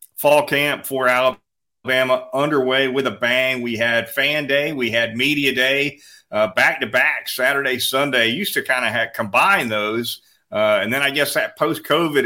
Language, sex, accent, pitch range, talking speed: English, male, American, 115-145 Hz, 170 wpm